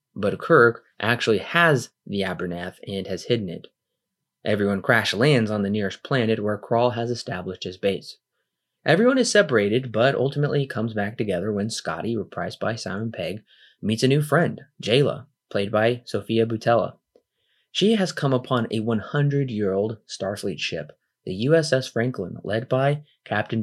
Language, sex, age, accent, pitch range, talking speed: English, male, 20-39, American, 100-135 Hz, 150 wpm